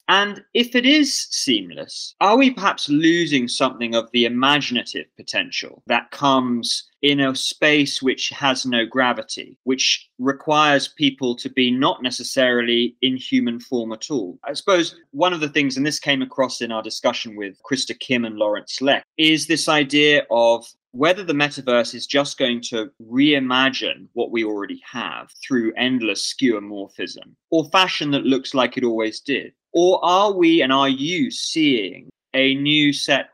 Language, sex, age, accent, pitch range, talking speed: English, male, 20-39, British, 120-165 Hz, 165 wpm